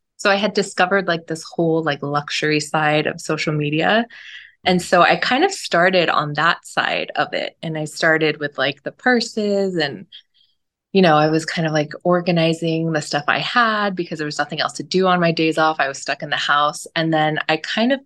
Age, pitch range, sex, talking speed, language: 20-39, 155-200 Hz, female, 220 wpm, English